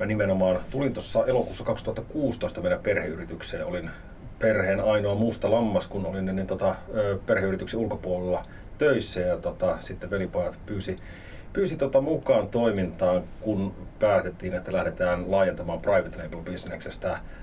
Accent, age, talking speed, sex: native, 30-49, 120 wpm, male